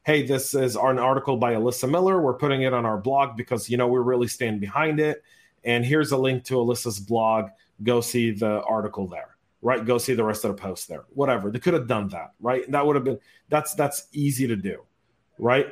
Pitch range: 115-145 Hz